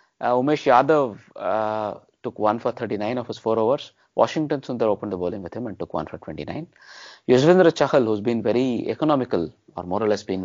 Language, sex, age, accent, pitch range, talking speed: English, male, 20-39, Indian, 100-125 Hz, 200 wpm